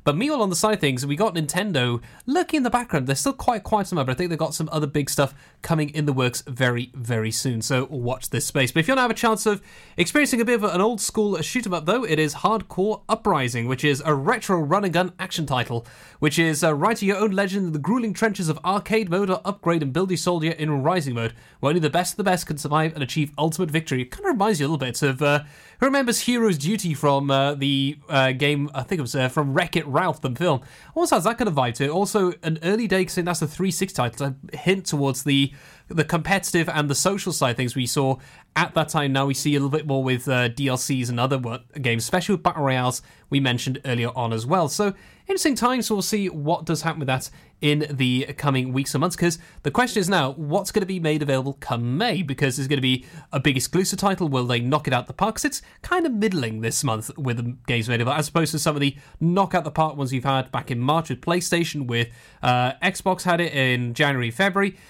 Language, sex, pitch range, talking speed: English, male, 135-190 Hz, 255 wpm